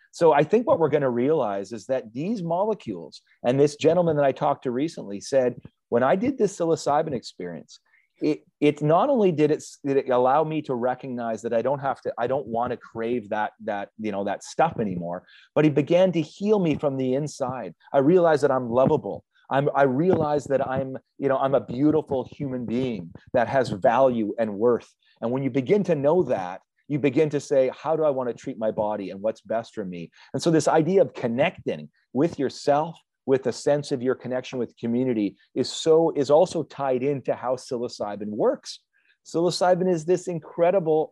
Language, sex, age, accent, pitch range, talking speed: English, male, 30-49, American, 125-170 Hz, 205 wpm